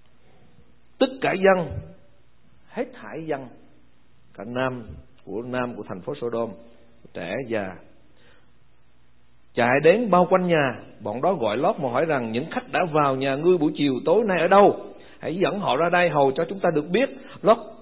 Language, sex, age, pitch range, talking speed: Vietnamese, male, 60-79, 135-210 Hz, 180 wpm